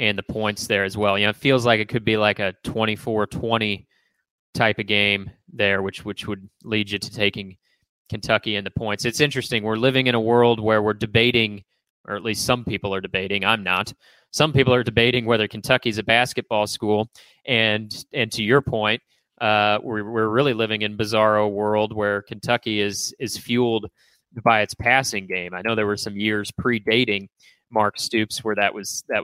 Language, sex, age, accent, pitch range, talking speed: English, male, 20-39, American, 105-120 Hz, 195 wpm